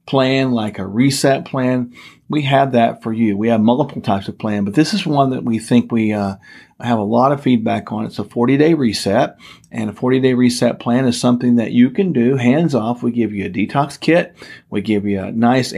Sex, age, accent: male, 40-59, American